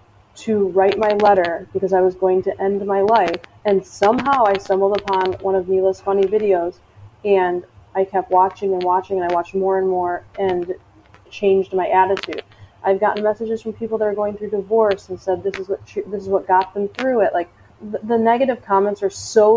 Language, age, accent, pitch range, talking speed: English, 30-49, American, 180-210 Hz, 205 wpm